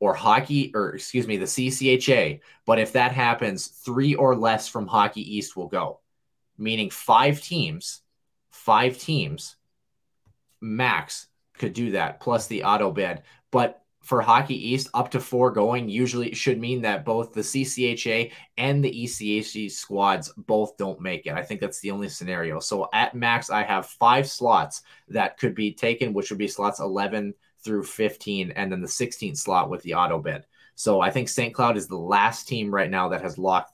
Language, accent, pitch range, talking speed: English, American, 105-125 Hz, 180 wpm